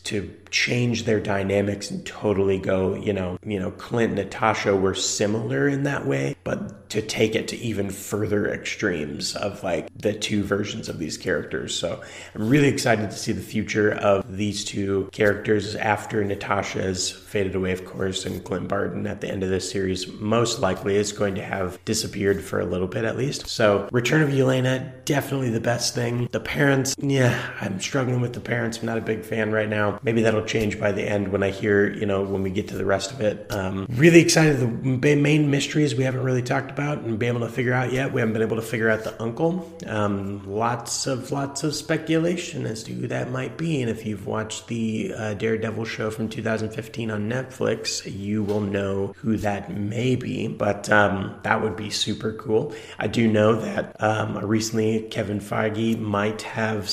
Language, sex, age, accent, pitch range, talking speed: English, male, 30-49, American, 100-120 Hz, 200 wpm